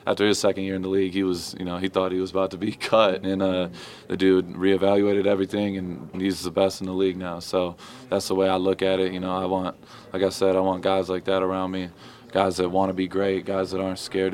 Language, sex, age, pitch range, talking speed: English, male, 20-39, 90-95 Hz, 270 wpm